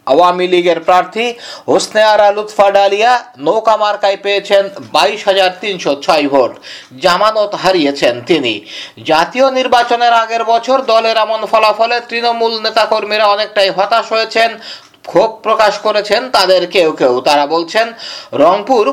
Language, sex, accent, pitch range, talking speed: Bengali, male, native, 195-225 Hz, 50 wpm